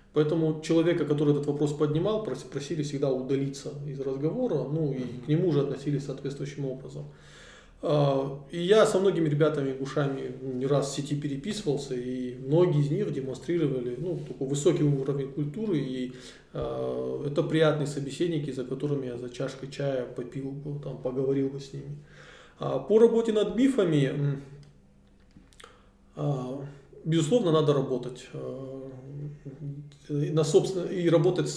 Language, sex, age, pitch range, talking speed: Russian, male, 20-39, 135-155 Hz, 120 wpm